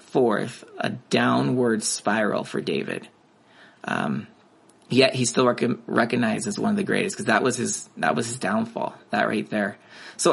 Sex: male